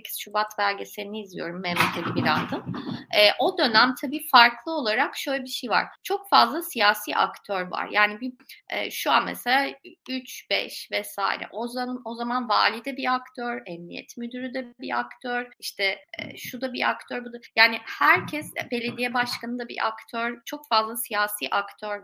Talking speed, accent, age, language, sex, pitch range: 155 wpm, native, 30-49, Turkish, female, 220-275 Hz